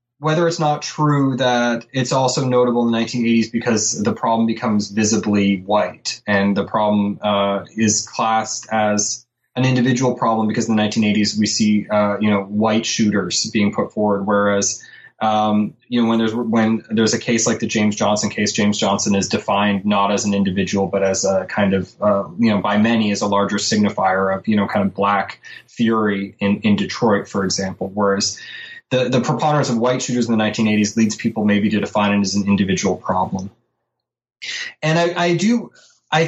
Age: 20-39